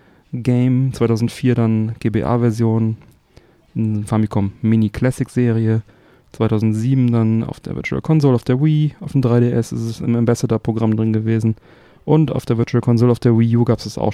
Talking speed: 155 wpm